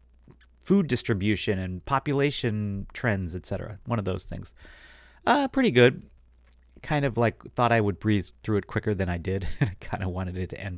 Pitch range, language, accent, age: 90-120 Hz, English, American, 30-49